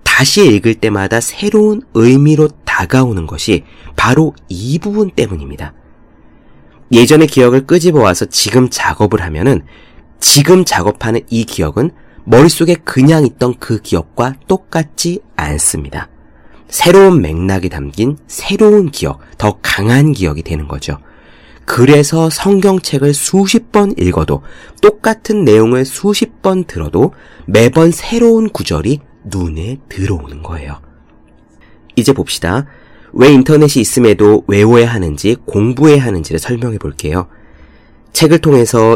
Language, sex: Korean, male